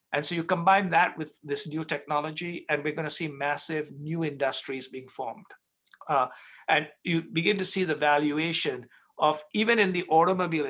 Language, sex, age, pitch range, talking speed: English, male, 60-79, 150-200 Hz, 175 wpm